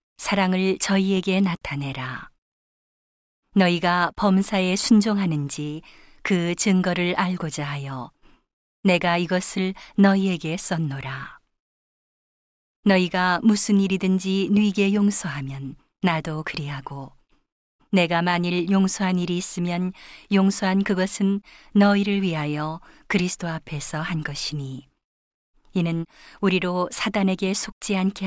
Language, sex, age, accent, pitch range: Korean, female, 40-59, native, 160-195 Hz